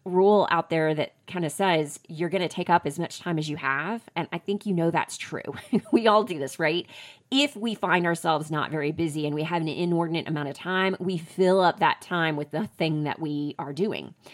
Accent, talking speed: American, 240 wpm